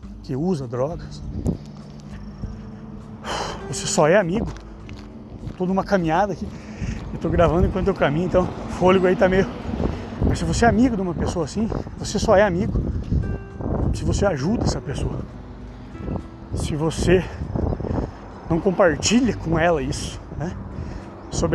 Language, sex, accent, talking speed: Portuguese, male, Brazilian, 135 wpm